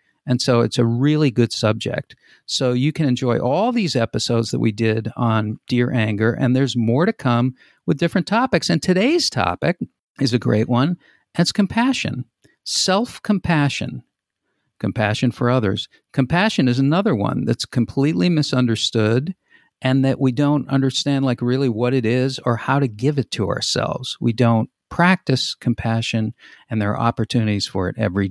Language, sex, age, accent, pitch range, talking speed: English, male, 50-69, American, 115-145 Hz, 160 wpm